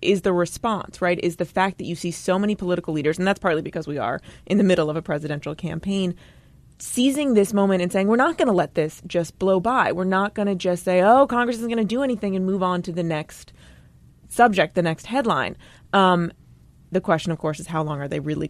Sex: female